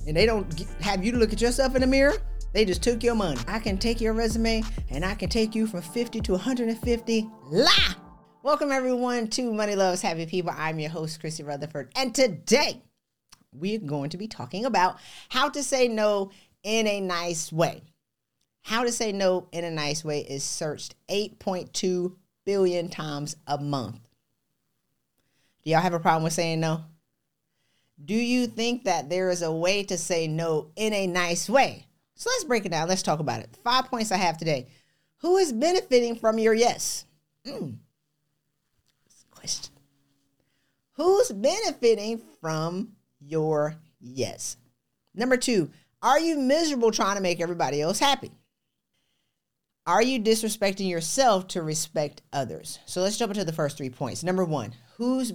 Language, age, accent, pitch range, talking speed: English, 40-59, American, 155-225 Hz, 170 wpm